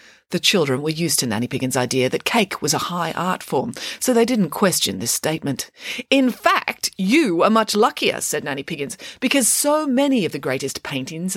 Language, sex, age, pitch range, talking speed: English, female, 40-59, 155-250 Hz, 195 wpm